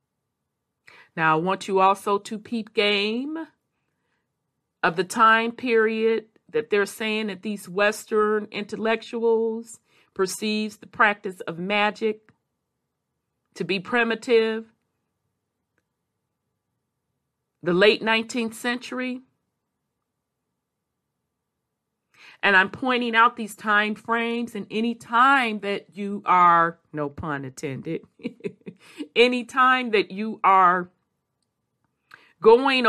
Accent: American